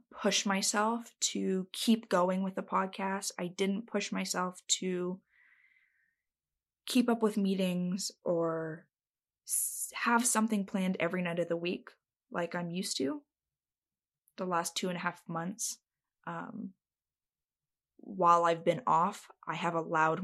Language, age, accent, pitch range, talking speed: English, 20-39, American, 175-225 Hz, 135 wpm